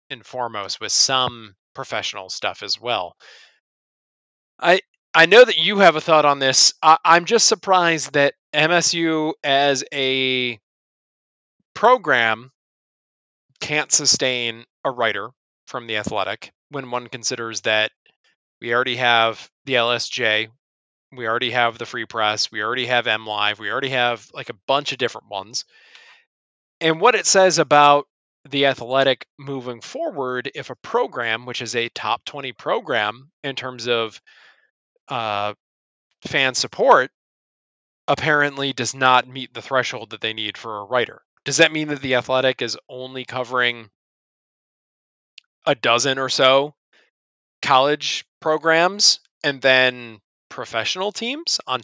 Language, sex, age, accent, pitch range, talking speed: English, male, 20-39, American, 115-145 Hz, 140 wpm